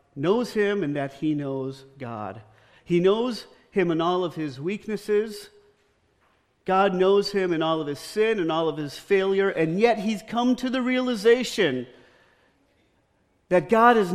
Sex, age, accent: male, 50-69, American